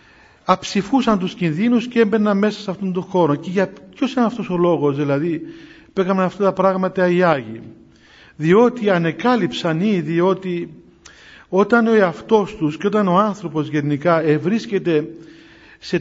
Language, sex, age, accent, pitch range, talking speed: Greek, male, 50-69, native, 165-210 Hz, 145 wpm